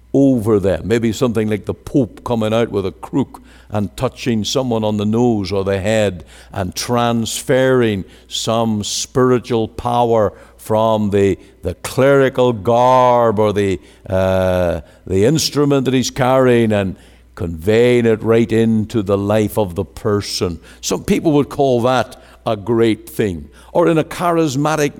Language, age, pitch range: English, 60-79, 105-155 Hz